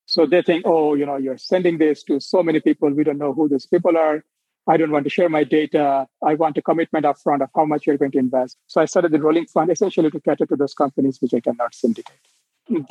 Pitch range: 150-175 Hz